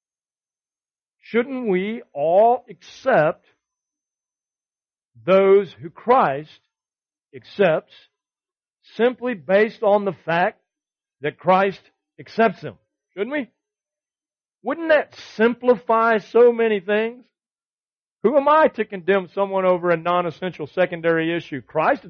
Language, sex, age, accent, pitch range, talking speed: English, male, 50-69, American, 165-230 Hz, 100 wpm